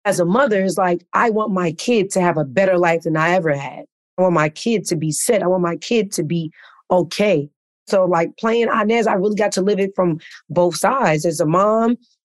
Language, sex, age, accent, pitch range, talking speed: English, female, 30-49, American, 175-215 Hz, 235 wpm